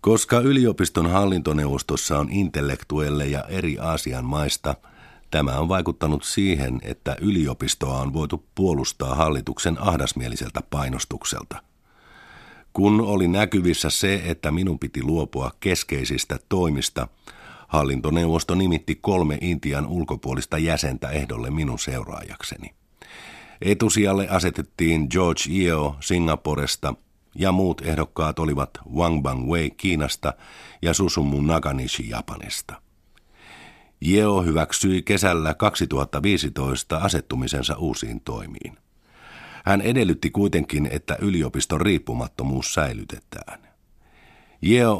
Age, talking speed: 50-69, 95 wpm